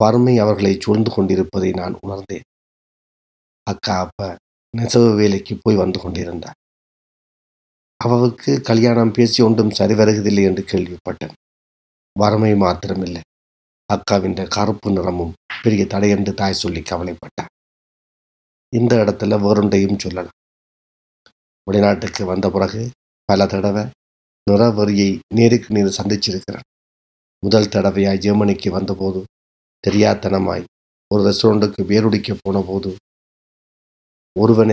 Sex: male